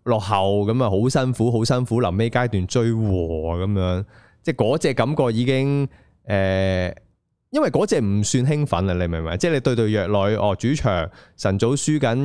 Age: 20-39